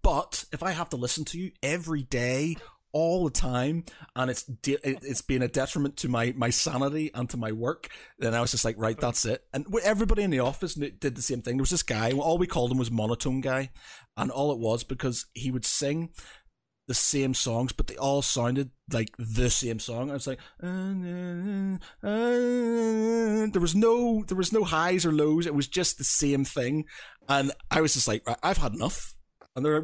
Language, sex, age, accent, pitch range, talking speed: English, male, 30-49, British, 120-160 Hz, 215 wpm